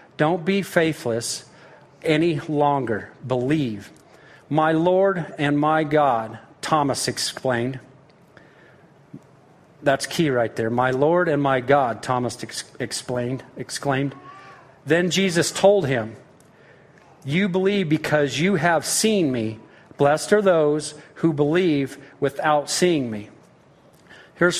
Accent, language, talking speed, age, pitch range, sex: American, English, 110 wpm, 50-69, 145-195 Hz, male